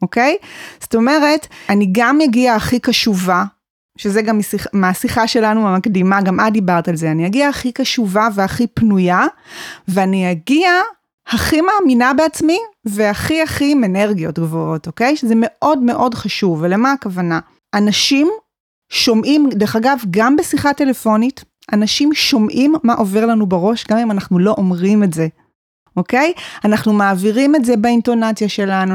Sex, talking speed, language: female, 145 wpm, Hebrew